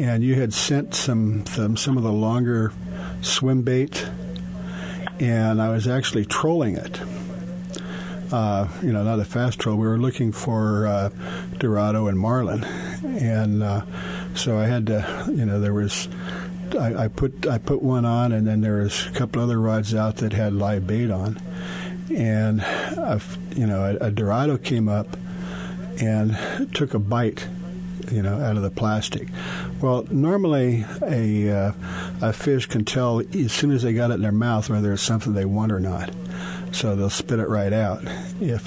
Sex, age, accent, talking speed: male, 50-69, American, 175 wpm